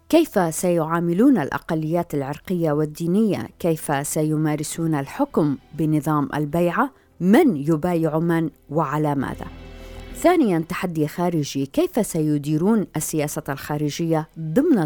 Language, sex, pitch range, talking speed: Arabic, female, 150-180 Hz, 95 wpm